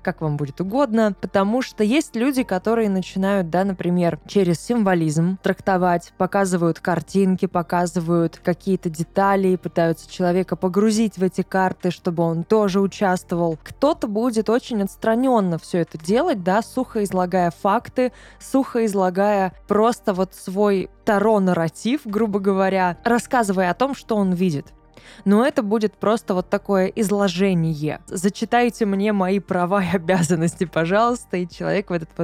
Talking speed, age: 135 wpm, 20-39